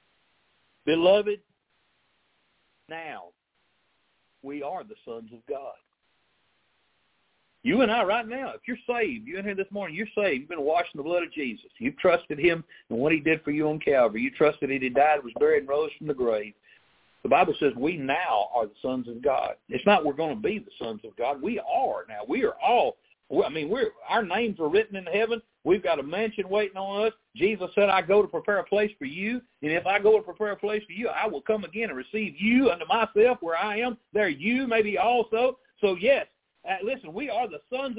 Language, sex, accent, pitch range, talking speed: English, male, American, 190-285 Hz, 220 wpm